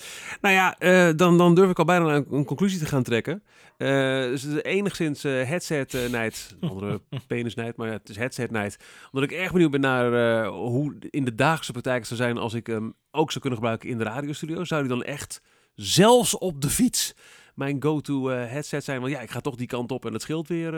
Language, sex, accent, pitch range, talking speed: Dutch, male, Dutch, 120-155 Hz, 240 wpm